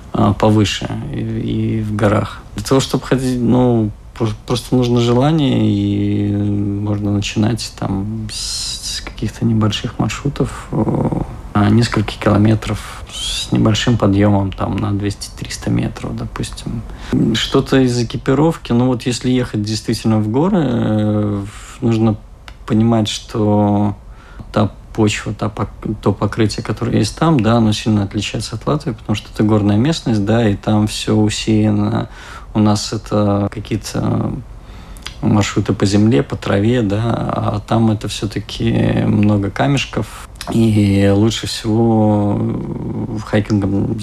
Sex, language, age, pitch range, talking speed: male, Russian, 50-69, 105-115 Hz, 125 wpm